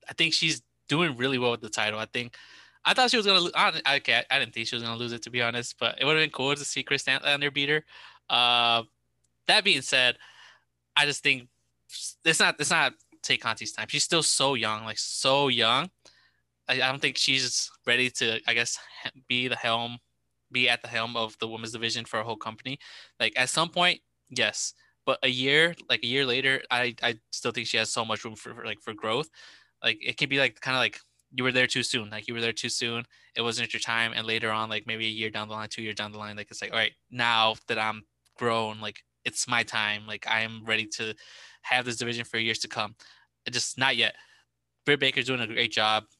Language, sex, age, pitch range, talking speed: English, male, 20-39, 110-130 Hz, 245 wpm